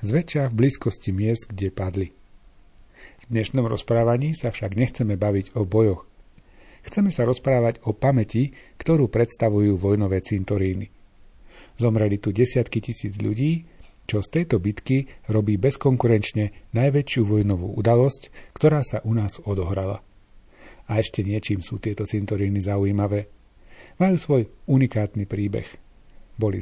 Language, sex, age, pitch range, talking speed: Slovak, male, 40-59, 100-125 Hz, 125 wpm